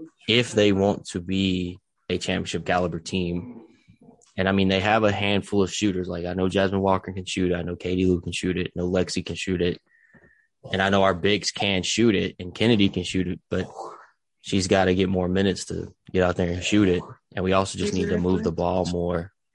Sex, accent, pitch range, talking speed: male, American, 90-100 Hz, 225 wpm